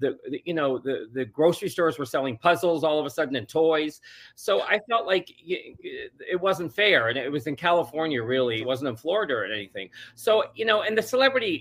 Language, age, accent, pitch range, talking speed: English, 40-59, American, 130-180 Hz, 210 wpm